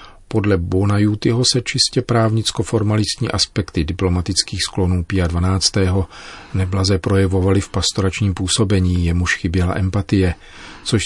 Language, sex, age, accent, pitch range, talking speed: Czech, male, 40-59, native, 90-100 Hz, 110 wpm